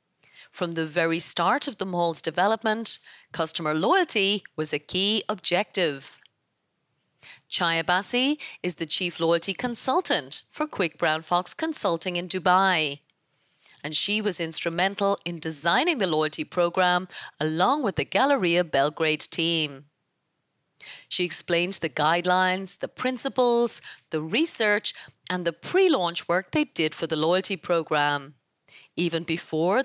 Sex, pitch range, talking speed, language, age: female, 160-215 Hz, 125 wpm, English, 30-49